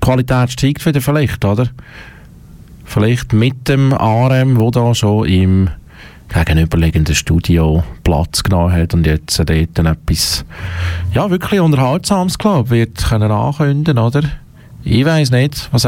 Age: 40-59